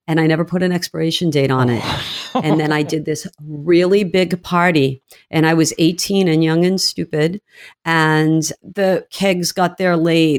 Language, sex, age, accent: English, female, 50-69, American